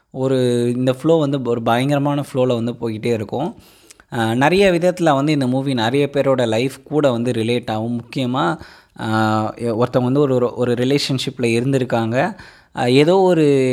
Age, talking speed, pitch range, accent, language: 20-39, 135 wpm, 115-140 Hz, native, Tamil